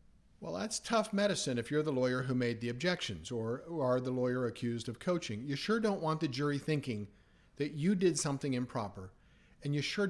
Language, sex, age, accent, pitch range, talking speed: English, male, 50-69, American, 125-160 Hz, 200 wpm